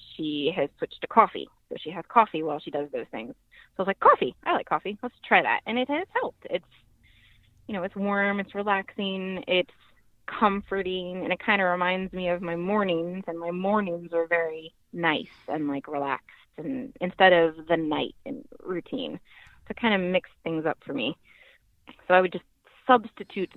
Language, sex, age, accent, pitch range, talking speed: English, female, 20-39, American, 160-220 Hz, 195 wpm